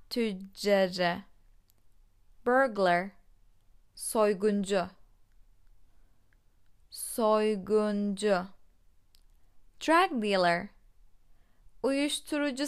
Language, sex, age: Turkish, female, 20-39